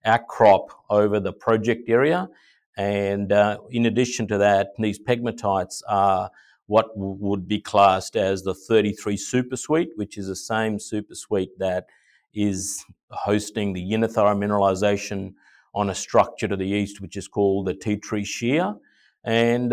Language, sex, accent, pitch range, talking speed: English, male, Australian, 100-115 Hz, 150 wpm